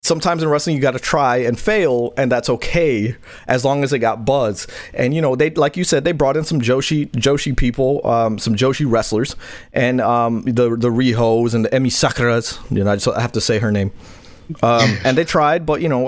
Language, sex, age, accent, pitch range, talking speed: English, male, 30-49, American, 110-150 Hz, 230 wpm